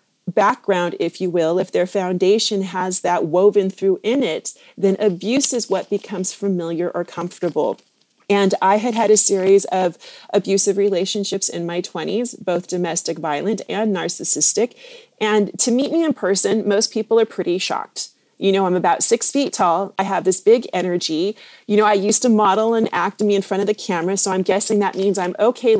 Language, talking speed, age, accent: English, 190 wpm, 30-49, American